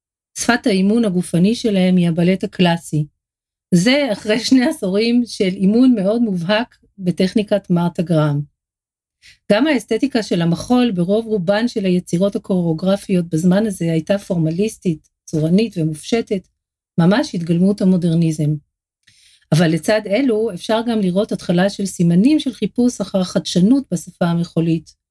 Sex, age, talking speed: female, 40-59, 120 wpm